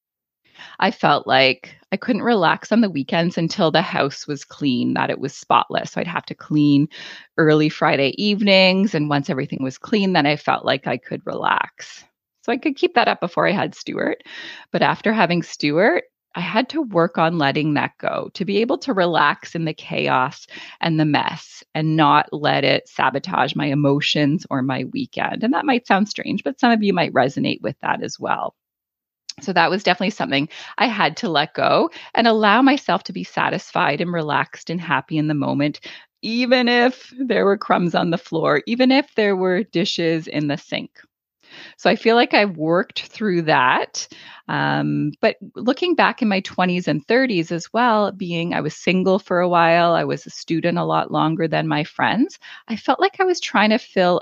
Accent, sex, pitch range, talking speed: American, female, 150-220 Hz, 200 wpm